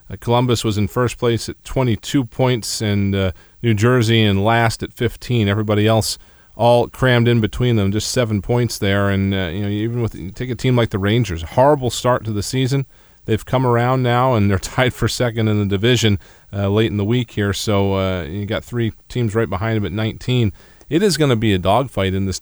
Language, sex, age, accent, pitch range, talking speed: English, male, 40-59, American, 95-115 Hz, 220 wpm